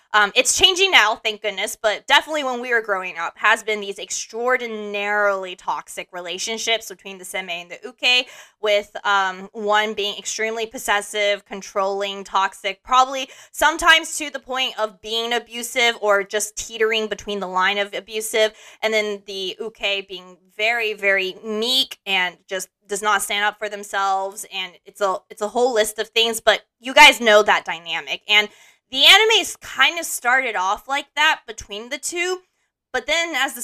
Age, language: 20-39, English